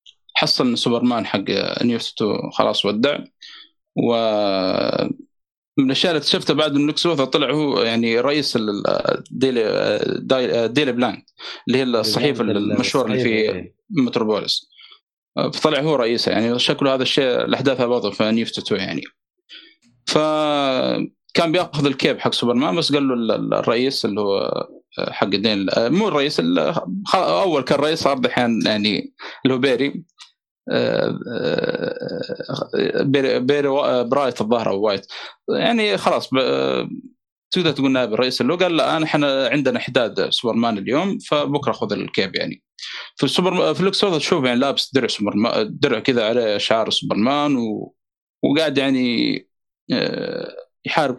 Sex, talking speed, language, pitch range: male, 120 wpm, Arabic, 120-175 Hz